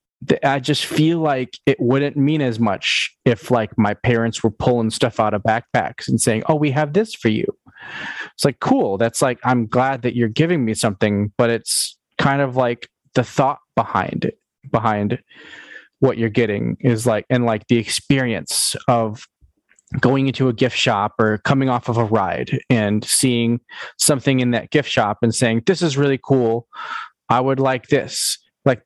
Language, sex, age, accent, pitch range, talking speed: English, male, 20-39, American, 115-145 Hz, 185 wpm